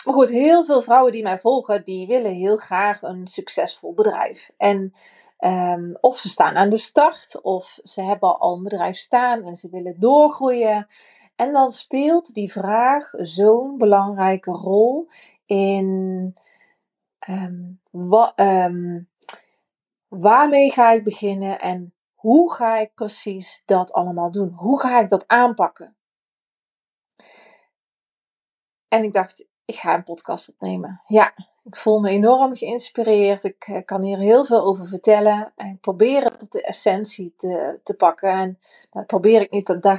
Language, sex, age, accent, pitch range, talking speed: Dutch, female, 30-49, Dutch, 190-240 Hz, 150 wpm